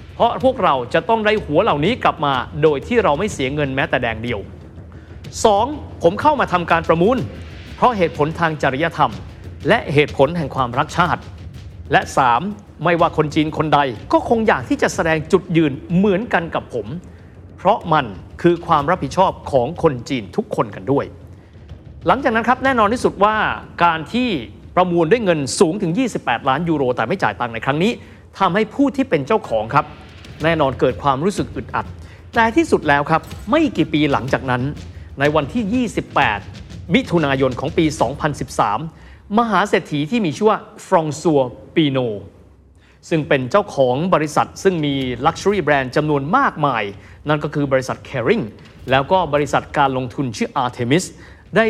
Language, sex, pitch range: Thai, male, 135-195 Hz